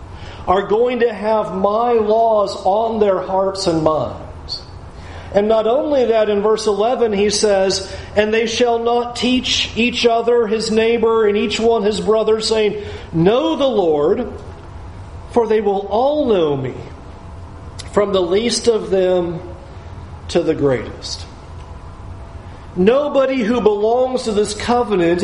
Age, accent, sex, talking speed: 40-59, American, male, 140 wpm